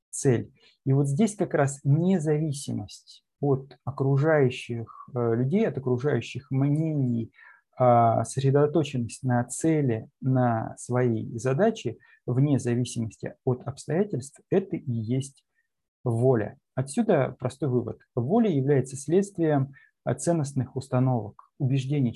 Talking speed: 95 wpm